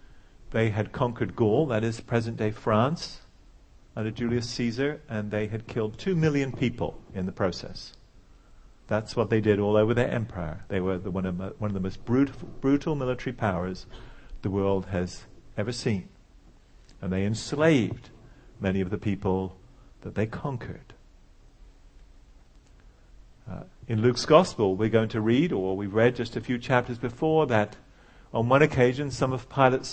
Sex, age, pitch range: male, 50-69, 100-130 Hz